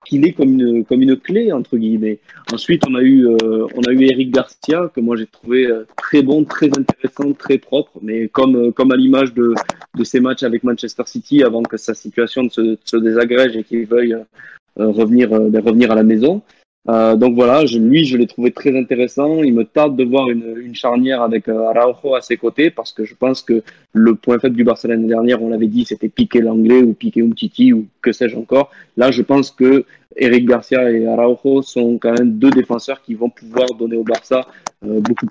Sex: male